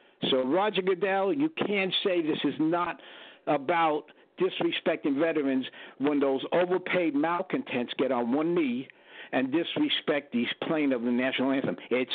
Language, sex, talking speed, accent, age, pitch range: English, male, 145 wpm, American, 60-79, 140-195 Hz